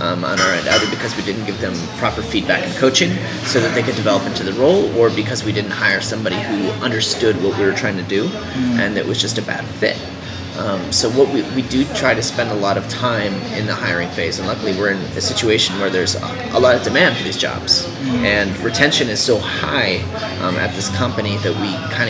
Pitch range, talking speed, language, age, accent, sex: 100-125 Hz, 240 wpm, English, 30-49, American, male